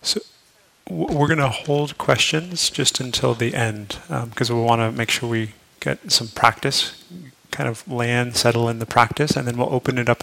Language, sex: English, male